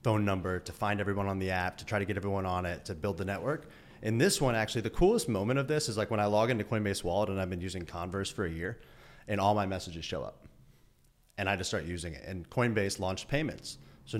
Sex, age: male, 30-49